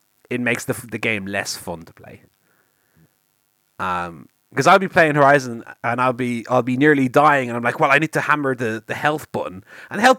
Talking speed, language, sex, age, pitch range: 220 wpm, English, male, 30-49, 100-145 Hz